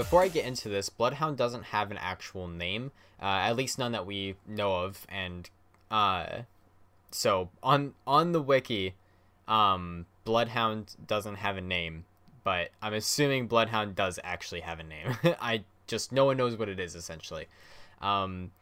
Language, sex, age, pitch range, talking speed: English, male, 10-29, 95-115 Hz, 165 wpm